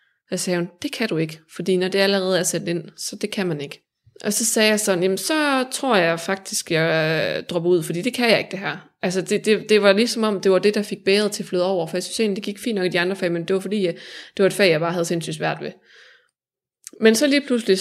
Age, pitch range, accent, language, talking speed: 20-39, 175-210 Hz, native, Danish, 290 wpm